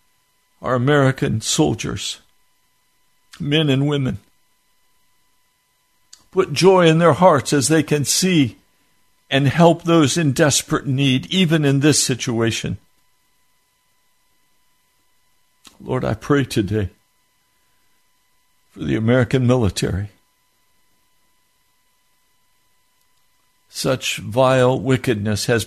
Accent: American